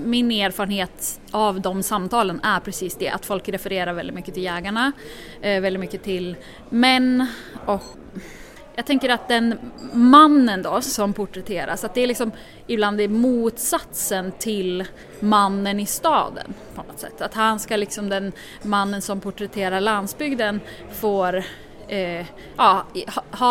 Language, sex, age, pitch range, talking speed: Swedish, female, 20-39, 190-235 Hz, 135 wpm